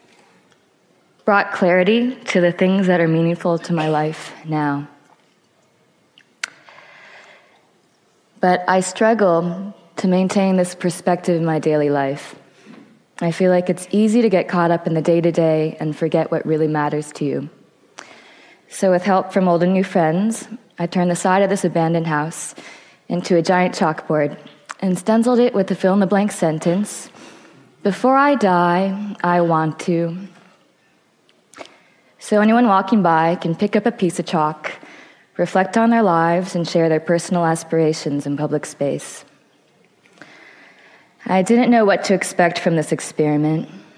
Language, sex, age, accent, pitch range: Chinese, female, 20-39, American, 160-190 Hz